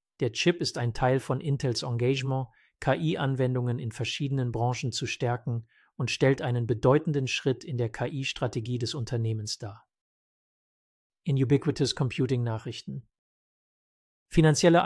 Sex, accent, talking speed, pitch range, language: male, German, 115 wpm, 120-145 Hz, English